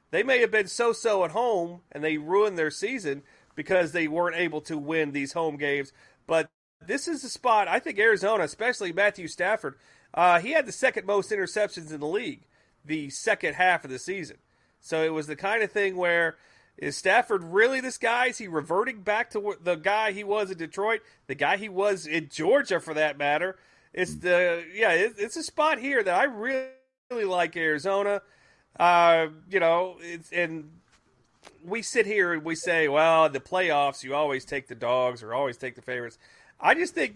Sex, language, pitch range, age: male, English, 150-205 Hz, 40-59